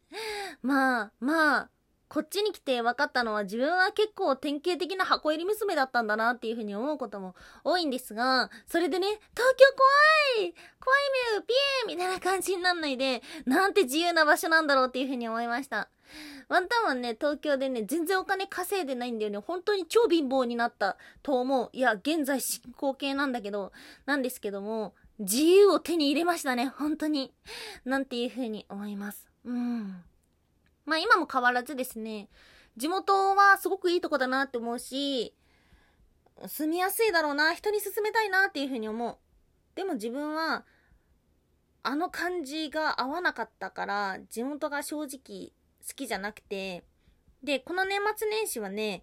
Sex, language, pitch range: female, Japanese, 235-360 Hz